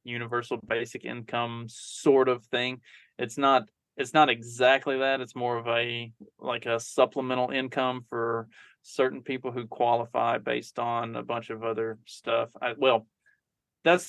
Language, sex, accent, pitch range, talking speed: English, male, American, 115-130 Hz, 145 wpm